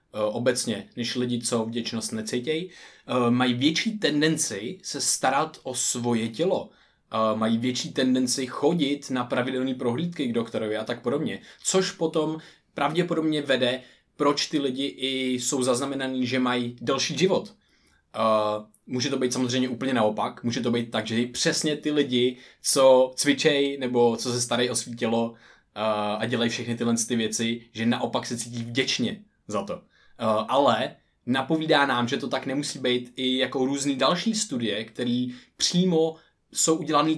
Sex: male